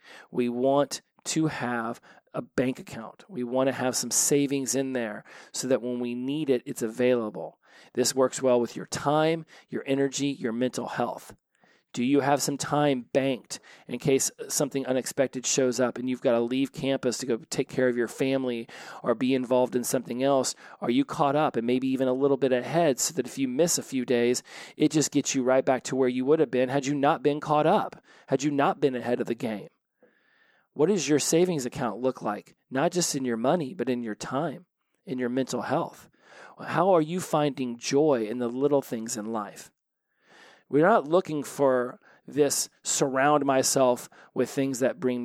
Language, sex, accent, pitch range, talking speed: English, male, American, 125-145 Hz, 200 wpm